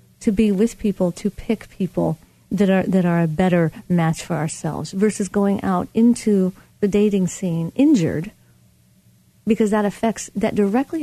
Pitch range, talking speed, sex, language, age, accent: 170-220 Hz, 160 wpm, female, English, 40-59, American